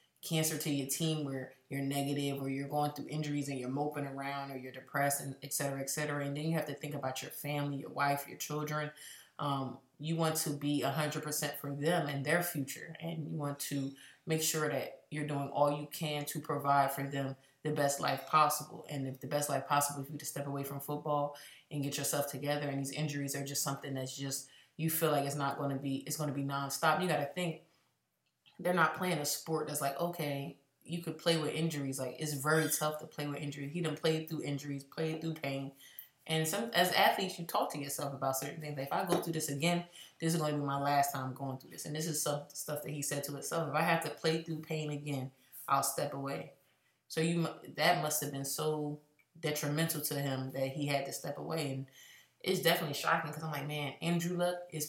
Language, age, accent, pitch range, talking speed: English, 20-39, American, 140-155 Hz, 240 wpm